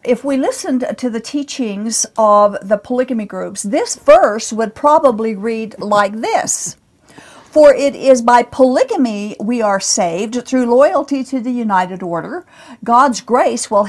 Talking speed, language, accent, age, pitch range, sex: 145 wpm, English, American, 50-69, 215-270 Hz, female